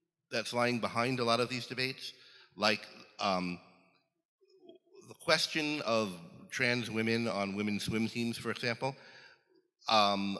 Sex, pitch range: male, 100-130 Hz